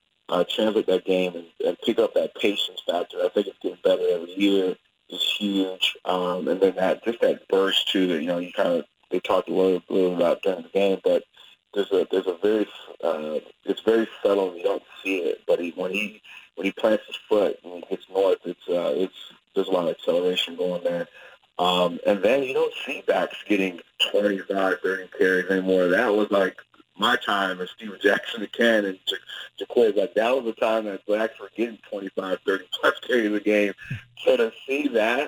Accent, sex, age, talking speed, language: American, male, 30-49, 215 wpm, English